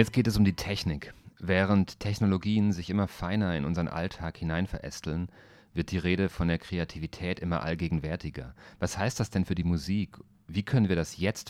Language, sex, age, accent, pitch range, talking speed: German, male, 40-59, German, 85-105 Hz, 185 wpm